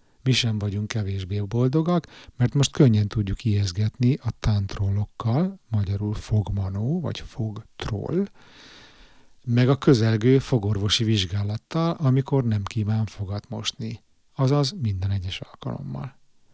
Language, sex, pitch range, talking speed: Hungarian, male, 100-125 Hz, 110 wpm